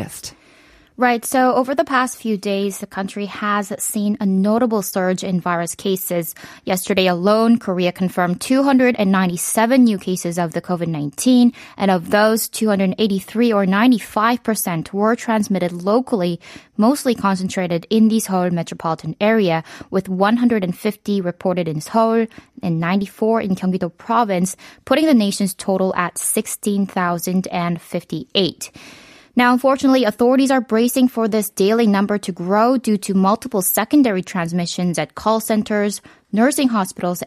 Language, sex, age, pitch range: Korean, female, 20-39, 185-235 Hz